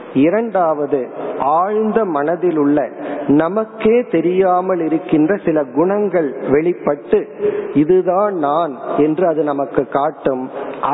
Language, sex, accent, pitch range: Tamil, male, native, 150-200 Hz